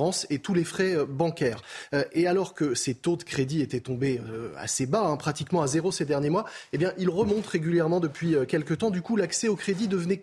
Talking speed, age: 210 wpm, 20-39